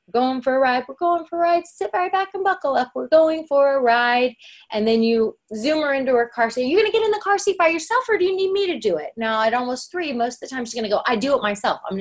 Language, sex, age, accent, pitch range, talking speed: English, female, 30-49, American, 205-310 Hz, 325 wpm